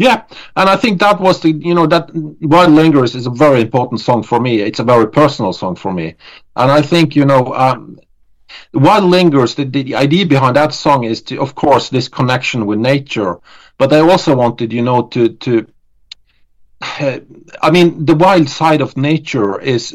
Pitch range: 115-150 Hz